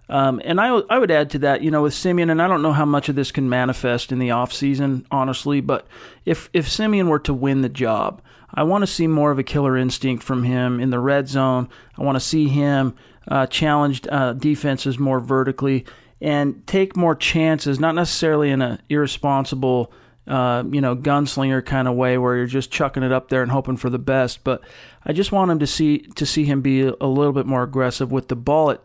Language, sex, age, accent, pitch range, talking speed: English, male, 40-59, American, 130-150 Hz, 225 wpm